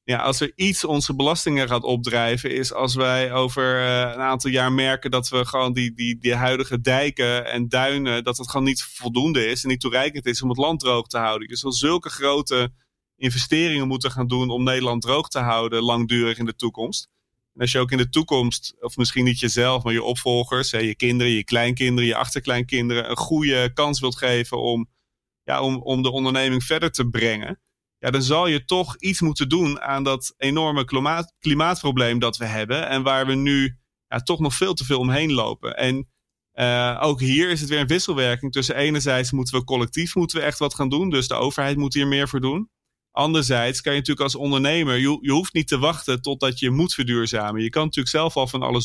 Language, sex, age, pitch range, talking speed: English, male, 30-49, 120-140 Hz, 210 wpm